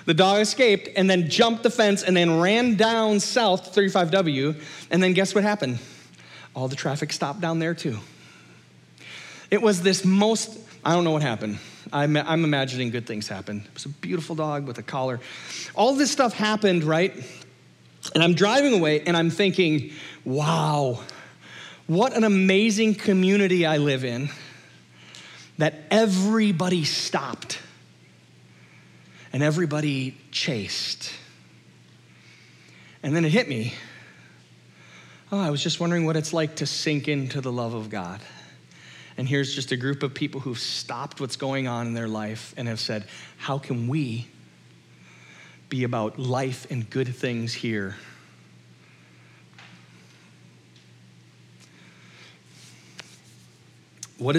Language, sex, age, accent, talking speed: English, male, 40-59, American, 135 wpm